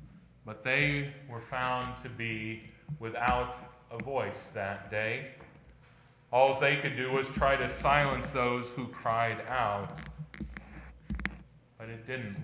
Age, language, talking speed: 40-59, English, 125 wpm